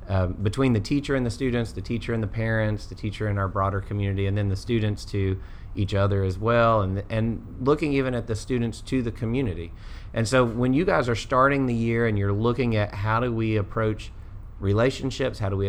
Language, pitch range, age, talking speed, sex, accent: English, 100-130 Hz, 30-49, 220 wpm, male, American